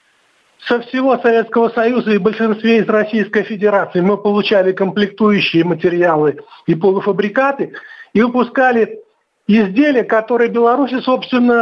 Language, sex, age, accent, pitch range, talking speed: Russian, male, 50-69, native, 195-240 Hz, 110 wpm